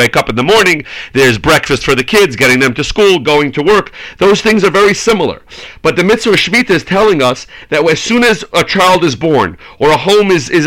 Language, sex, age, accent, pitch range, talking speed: English, male, 40-59, American, 160-215 Hz, 235 wpm